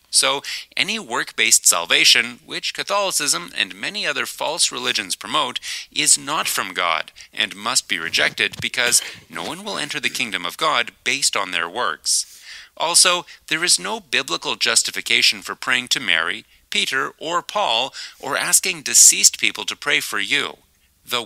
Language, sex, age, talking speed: English, male, 30-49, 155 wpm